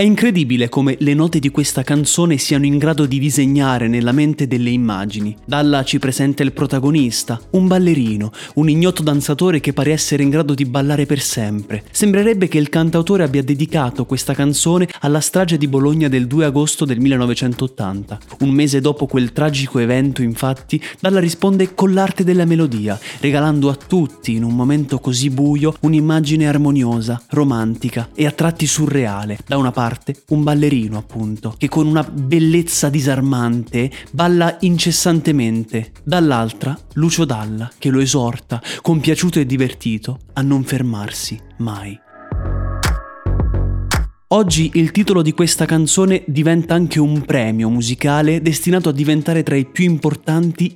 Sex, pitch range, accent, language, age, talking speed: male, 120-160 Hz, native, Italian, 20-39, 150 wpm